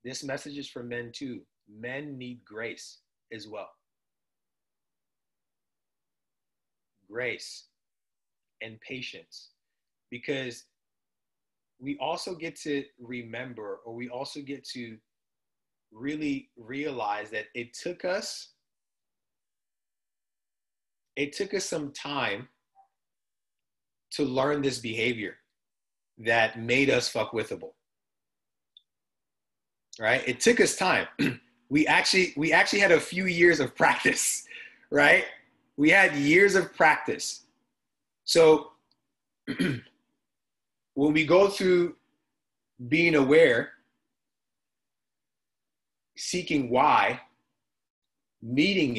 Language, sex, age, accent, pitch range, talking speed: English, male, 30-49, American, 125-165 Hz, 95 wpm